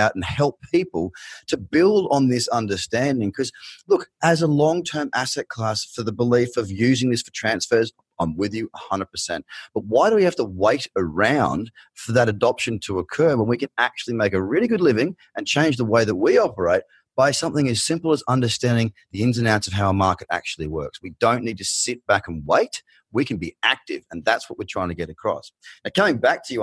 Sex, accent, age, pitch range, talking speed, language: male, Australian, 30-49, 90-120 Hz, 220 wpm, English